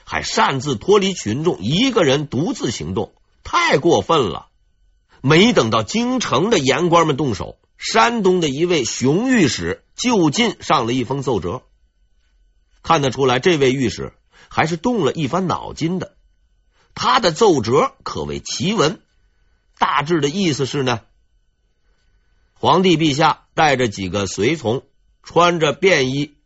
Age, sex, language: 50-69, male, Chinese